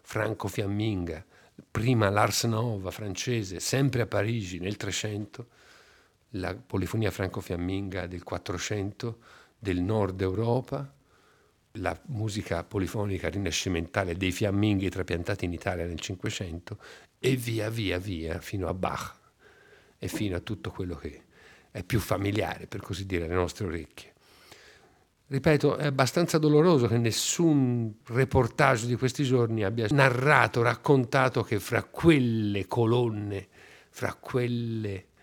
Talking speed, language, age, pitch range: 125 wpm, Italian, 50-69, 95-120 Hz